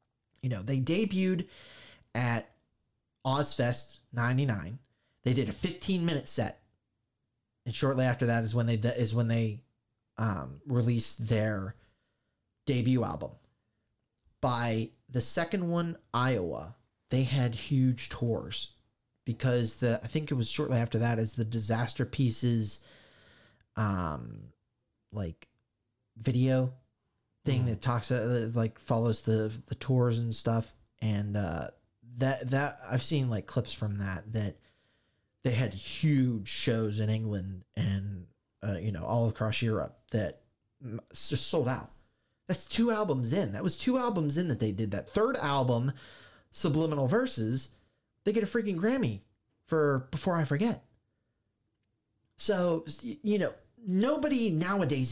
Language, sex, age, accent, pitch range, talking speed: English, male, 30-49, American, 110-135 Hz, 135 wpm